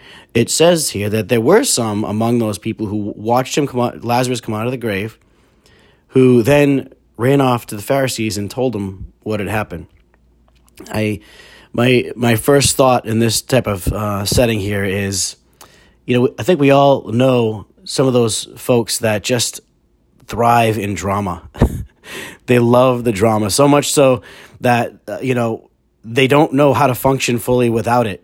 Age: 30-49